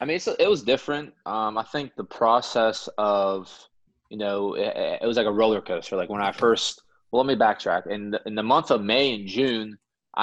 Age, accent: 20-39, American